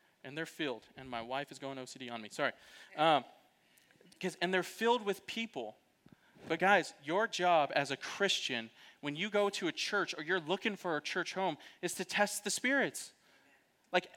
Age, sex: 30-49, male